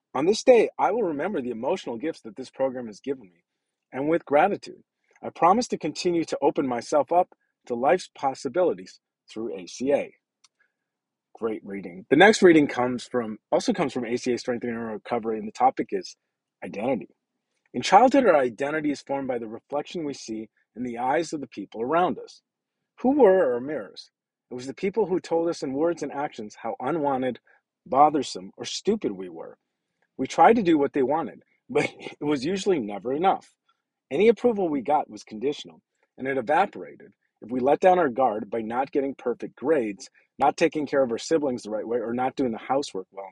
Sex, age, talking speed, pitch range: male, 40-59, 195 wpm, 125-165 Hz